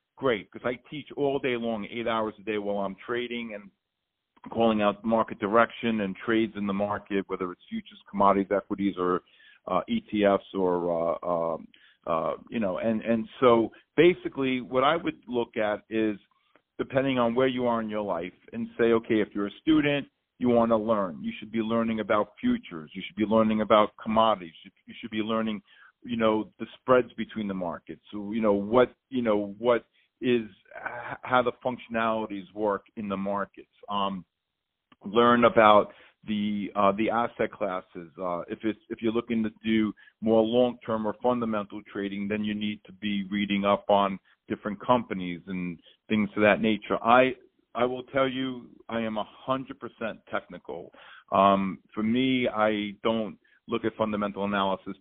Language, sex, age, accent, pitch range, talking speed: English, male, 50-69, American, 100-120 Hz, 175 wpm